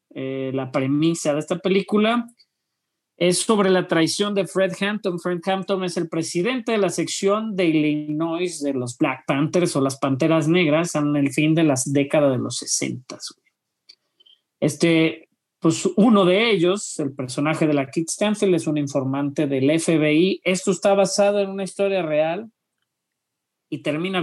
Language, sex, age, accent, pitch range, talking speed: Spanish, male, 40-59, Mexican, 145-190 Hz, 160 wpm